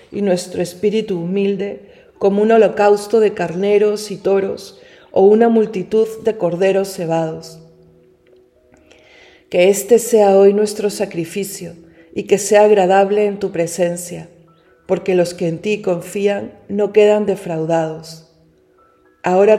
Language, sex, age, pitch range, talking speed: Spanish, female, 40-59, 165-200 Hz, 125 wpm